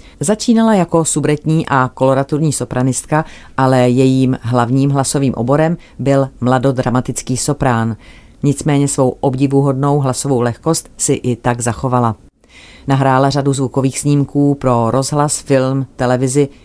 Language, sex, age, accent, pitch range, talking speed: Czech, female, 40-59, native, 125-145 Hz, 110 wpm